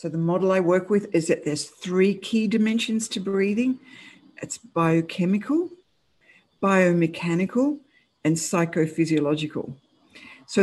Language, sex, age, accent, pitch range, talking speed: English, female, 60-79, Australian, 150-210 Hz, 115 wpm